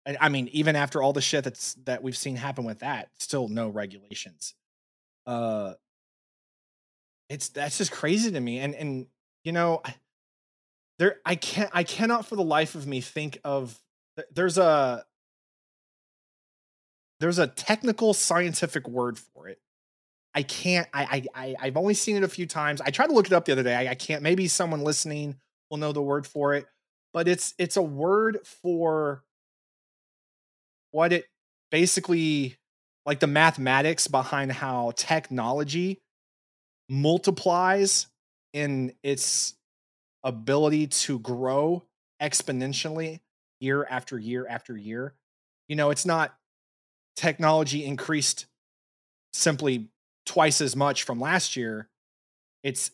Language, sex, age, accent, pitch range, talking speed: English, male, 20-39, American, 130-165 Hz, 140 wpm